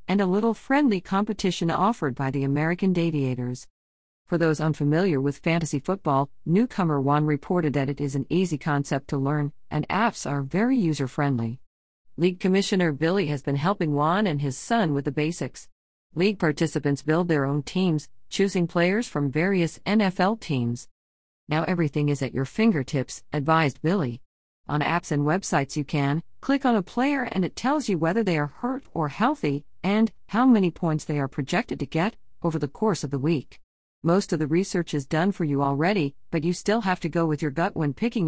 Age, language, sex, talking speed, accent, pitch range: 50-69, English, female, 190 wpm, American, 145-185 Hz